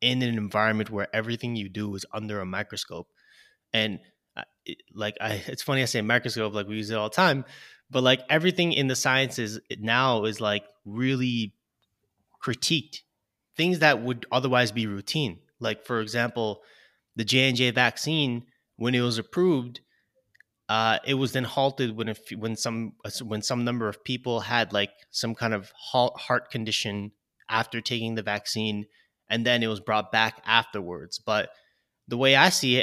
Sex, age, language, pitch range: male, 20-39, English, 110-130 Hz